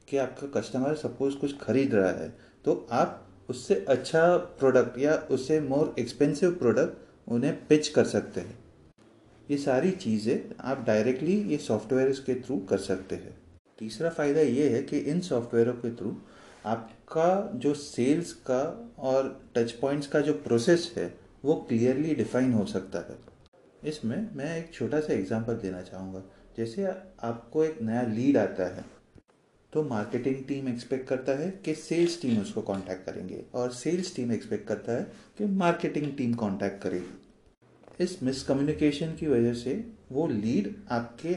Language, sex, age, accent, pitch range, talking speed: Hindi, male, 30-49, native, 115-155 Hz, 155 wpm